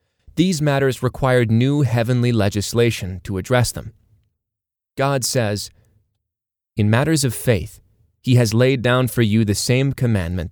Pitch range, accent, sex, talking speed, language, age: 100-125 Hz, American, male, 135 wpm, English, 30-49